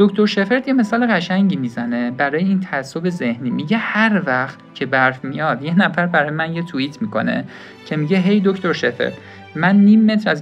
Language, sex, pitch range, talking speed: Persian, male, 130-185 Hz, 190 wpm